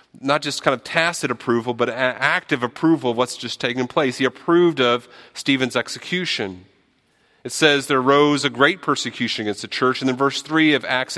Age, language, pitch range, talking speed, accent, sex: 40-59, English, 120-155 Hz, 190 wpm, American, male